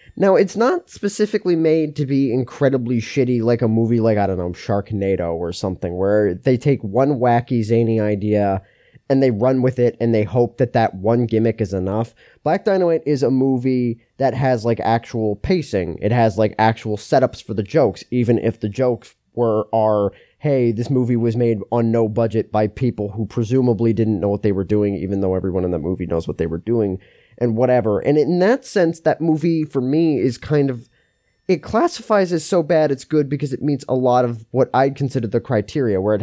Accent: American